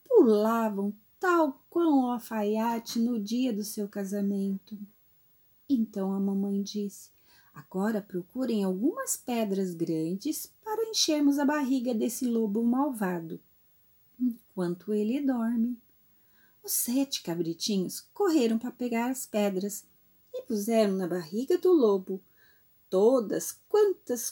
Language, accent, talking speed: Portuguese, Brazilian, 110 wpm